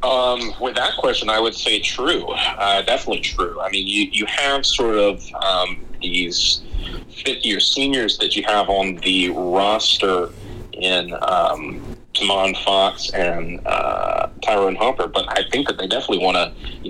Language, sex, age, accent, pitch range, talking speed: English, male, 30-49, American, 95-105 Hz, 165 wpm